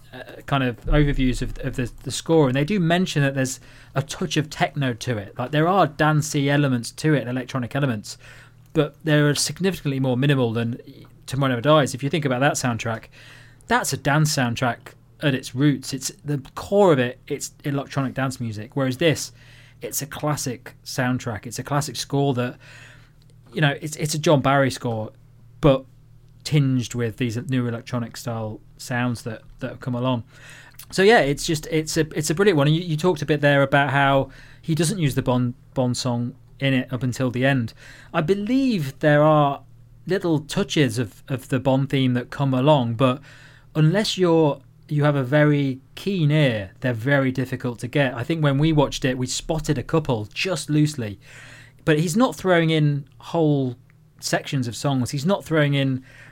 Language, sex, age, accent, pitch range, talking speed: English, male, 20-39, British, 125-150 Hz, 190 wpm